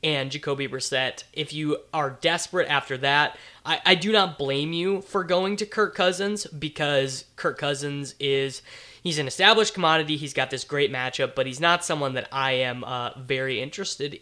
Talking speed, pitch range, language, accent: 180 wpm, 135-165 Hz, English, American